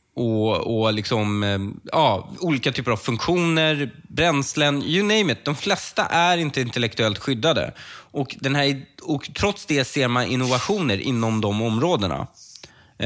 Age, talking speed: 20-39, 135 wpm